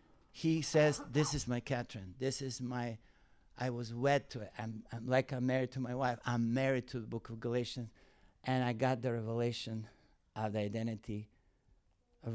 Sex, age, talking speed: male, 60-79, 185 wpm